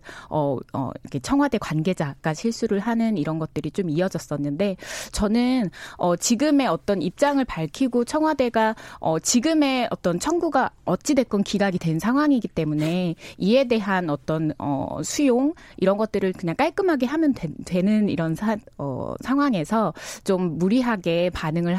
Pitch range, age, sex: 170-245 Hz, 20-39, female